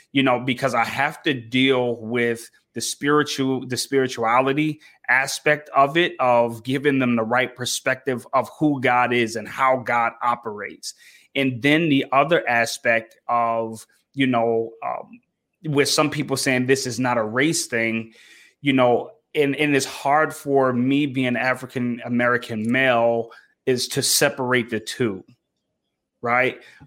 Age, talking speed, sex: 30-49, 145 wpm, male